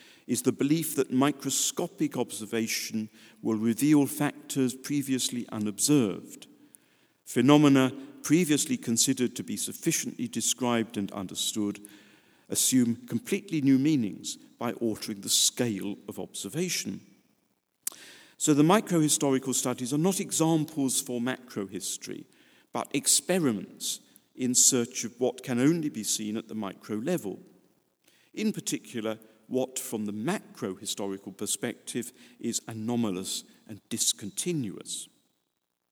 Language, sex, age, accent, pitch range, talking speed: English, male, 50-69, British, 110-140 Hz, 105 wpm